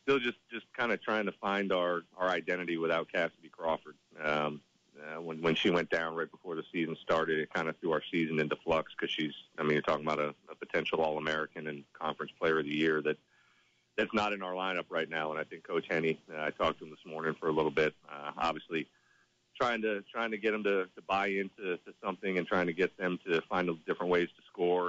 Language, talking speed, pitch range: English, 240 wpm, 80-95 Hz